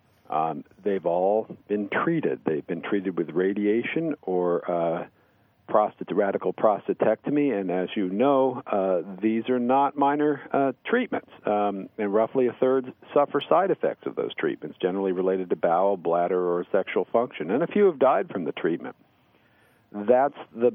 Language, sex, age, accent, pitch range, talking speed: English, male, 50-69, American, 110-145 Hz, 155 wpm